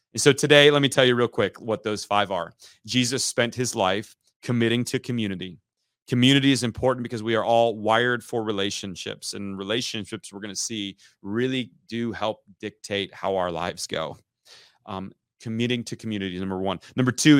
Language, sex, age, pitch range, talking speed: English, male, 30-49, 105-125 Hz, 175 wpm